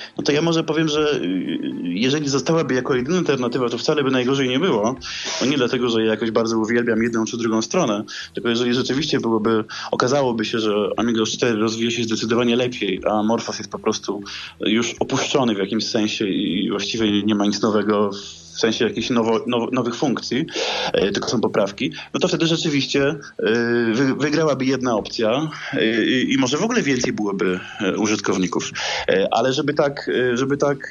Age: 20-39